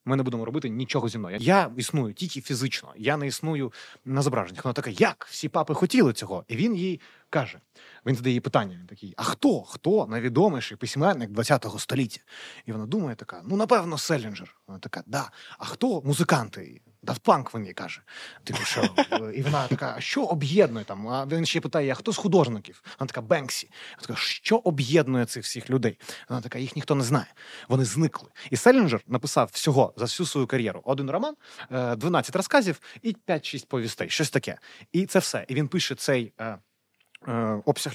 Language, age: Ukrainian, 20-39